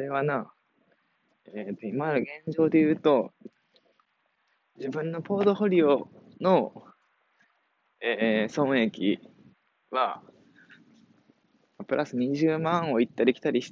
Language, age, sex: Japanese, 20-39, male